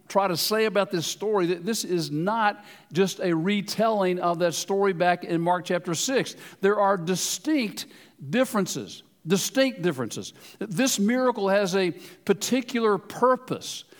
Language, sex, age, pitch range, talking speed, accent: English, male, 50-69, 180-235 Hz, 140 wpm, American